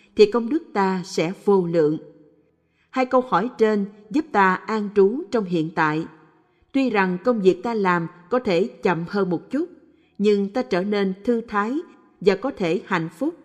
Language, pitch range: Vietnamese, 175-235 Hz